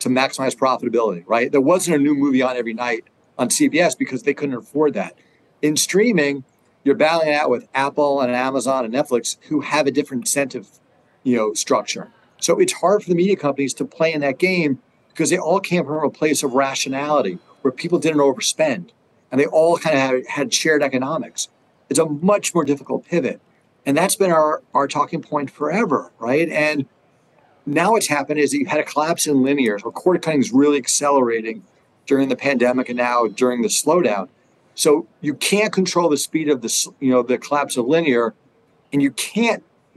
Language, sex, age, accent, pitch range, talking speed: English, male, 40-59, American, 130-165 Hz, 195 wpm